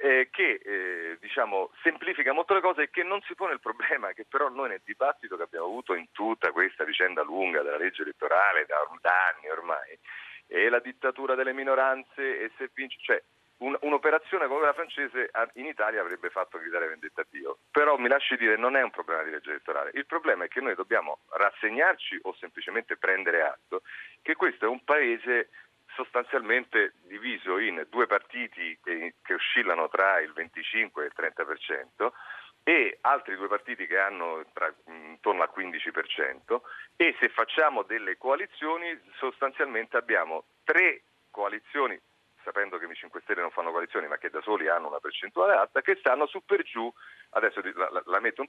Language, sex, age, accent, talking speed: Italian, male, 40-59, native, 170 wpm